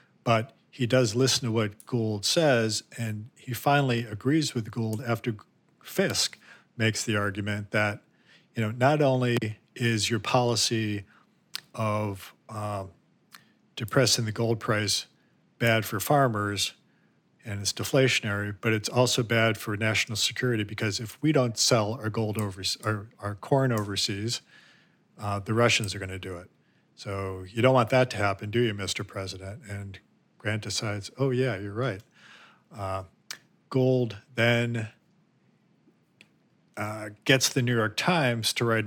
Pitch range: 105-125 Hz